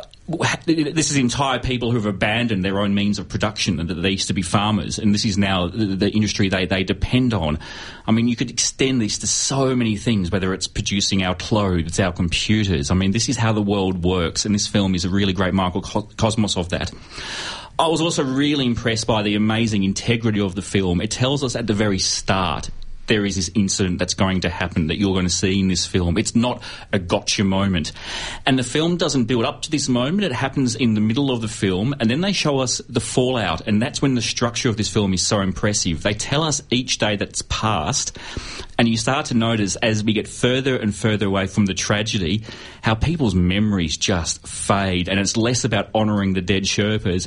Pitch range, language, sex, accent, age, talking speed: 95-120 Hz, English, male, Australian, 30-49, 220 wpm